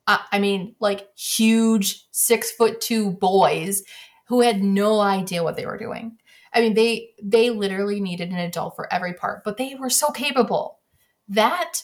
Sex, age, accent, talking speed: female, 20-39, American, 165 wpm